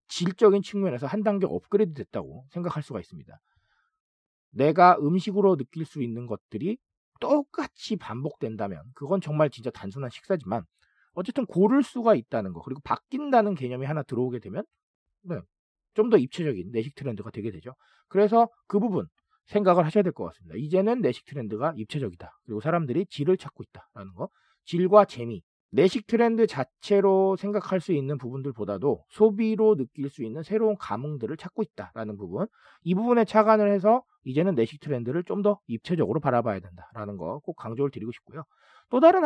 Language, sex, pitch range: Korean, male, 130-210 Hz